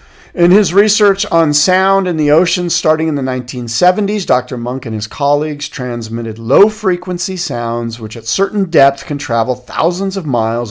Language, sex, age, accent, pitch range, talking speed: English, male, 50-69, American, 110-155 Hz, 170 wpm